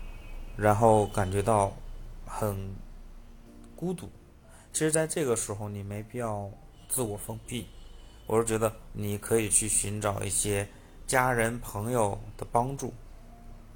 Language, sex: Chinese, male